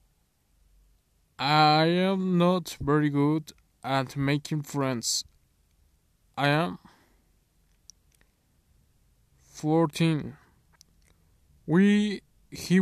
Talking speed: 60 wpm